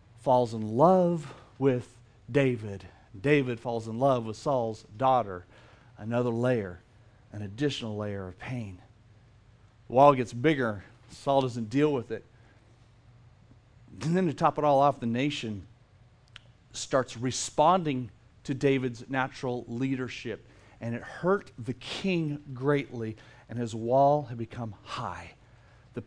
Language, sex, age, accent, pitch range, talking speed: English, male, 40-59, American, 110-140 Hz, 130 wpm